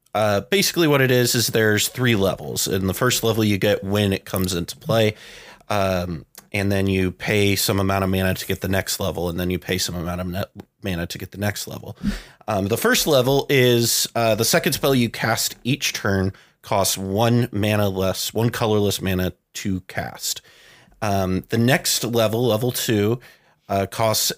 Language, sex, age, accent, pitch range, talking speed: English, male, 30-49, American, 95-120 Hz, 190 wpm